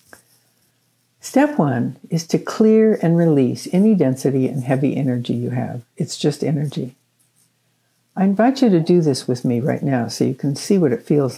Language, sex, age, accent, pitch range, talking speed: English, female, 60-79, American, 130-180 Hz, 180 wpm